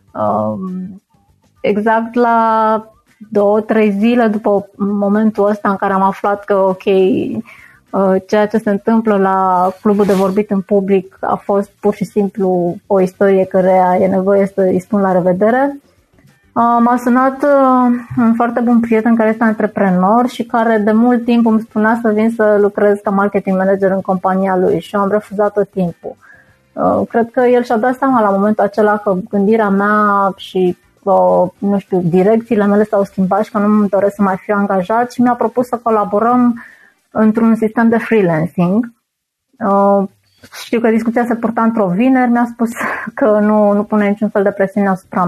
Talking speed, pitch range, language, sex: 160 wpm, 195-230 Hz, Romanian, female